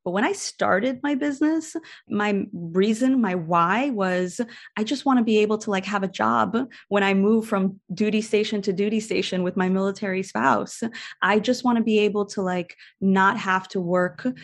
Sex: female